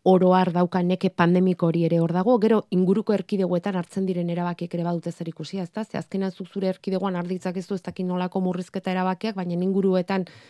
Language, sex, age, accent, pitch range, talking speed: Spanish, female, 30-49, Spanish, 180-215 Hz, 185 wpm